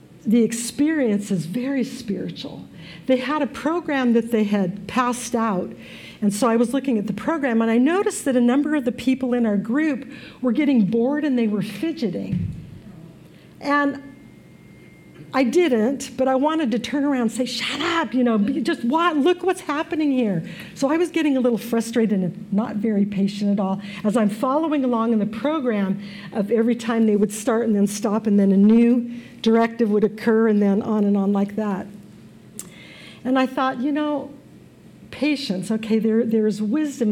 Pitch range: 205-250 Hz